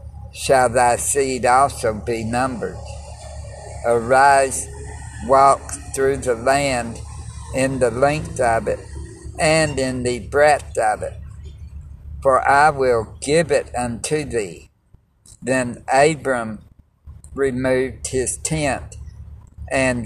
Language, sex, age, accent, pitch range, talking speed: English, male, 50-69, American, 85-130 Hz, 105 wpm